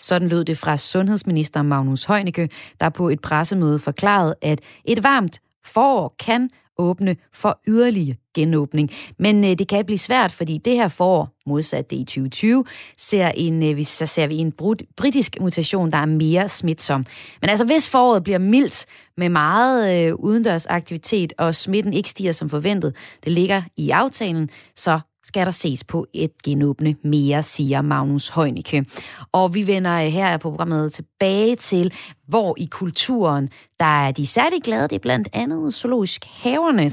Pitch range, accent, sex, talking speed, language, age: 150-205 Hz, native, female, 155 wpm, Danish, 30-49